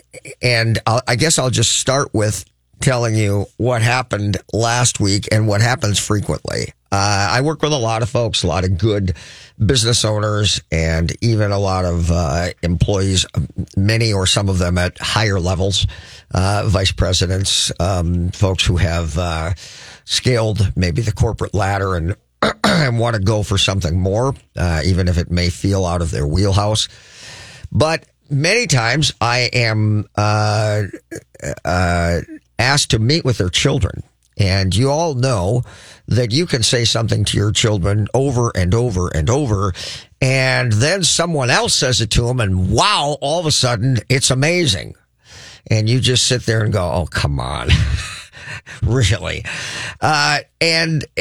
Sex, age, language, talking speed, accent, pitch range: male, 50-69, English, 160 wpm, American, 95-125 Hz